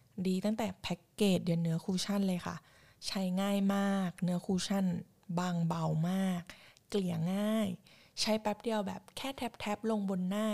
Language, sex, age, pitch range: Thai, female, 20-39, 180-215 Hz